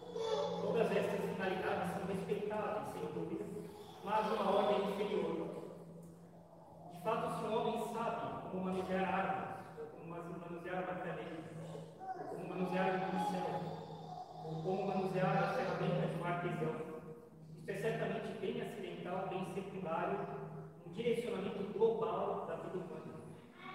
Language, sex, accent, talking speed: Portuguese, male, Brazilian, 115 wpm